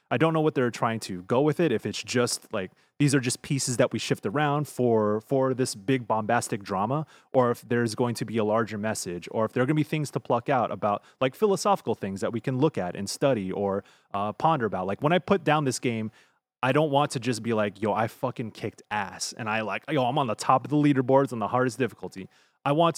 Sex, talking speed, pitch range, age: male, 260 wpm, 110-150 Hz, 30-49